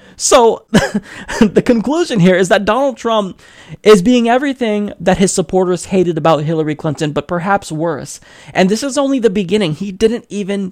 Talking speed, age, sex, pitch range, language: 170 wpm, 20-39, male, 180-240 Hz, English